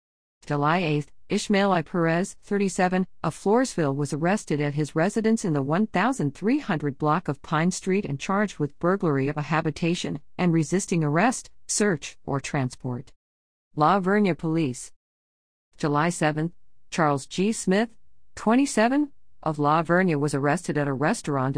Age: 50-69